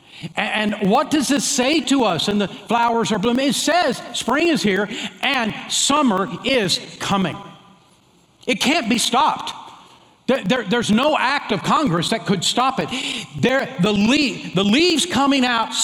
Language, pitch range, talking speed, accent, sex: English, 180-255 Hz, 160 wpm, American, male